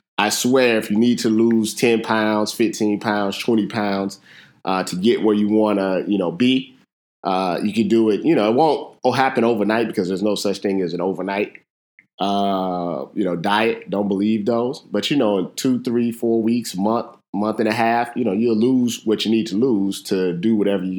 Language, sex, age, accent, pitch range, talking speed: English, male, 20-39, American, 95-115 Hz, 215 wpm